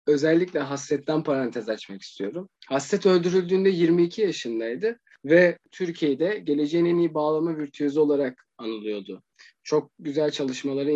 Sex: male